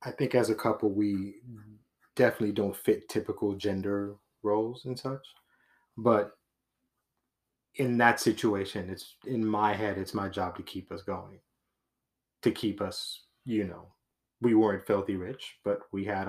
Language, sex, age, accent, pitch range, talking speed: English, male, 30-49, American, 100-120 Hz, 150 wpm